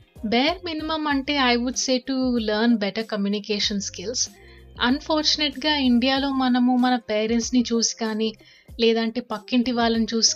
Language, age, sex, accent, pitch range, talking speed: Telugu, 30-49, female, native, 210-250 Hz, 125 wpm